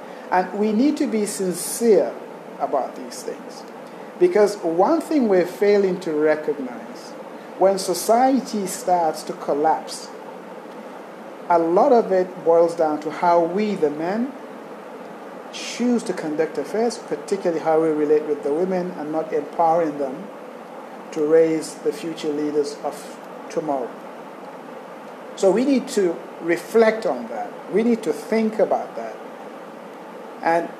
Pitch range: 160-240 Hz